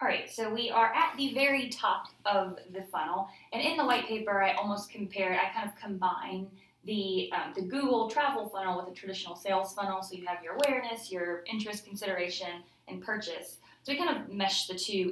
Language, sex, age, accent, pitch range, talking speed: English, female, 20-39, American, 185-225 Hz, 205 wpm